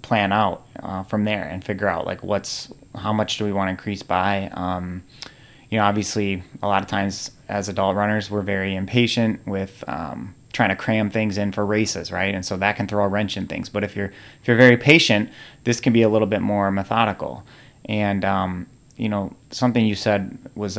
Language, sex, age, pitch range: English, male, 30-49, 95-120 Hz